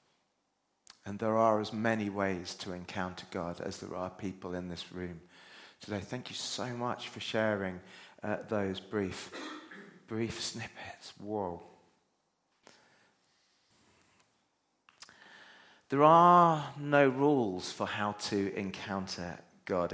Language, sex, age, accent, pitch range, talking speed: English, male, 40-59, British, 100-130 Hz, 115 wpm